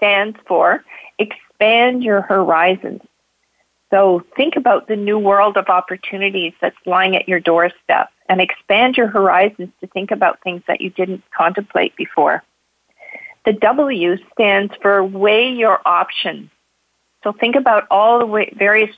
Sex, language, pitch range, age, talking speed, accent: female, English, 185-225 Hz, 50-69, 140 wpm, American